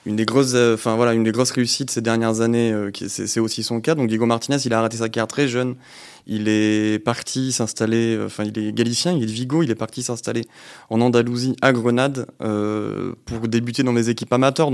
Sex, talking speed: male, 235 wpm